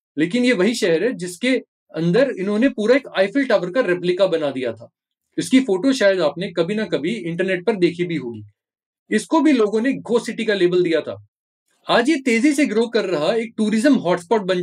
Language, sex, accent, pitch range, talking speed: Hindi, male, native, 170-235 Hz, 205 wpm